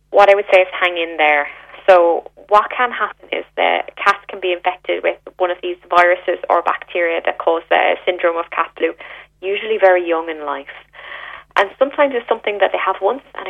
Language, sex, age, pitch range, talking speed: English, female, 20-39, 170-205 Hz, 205 wpm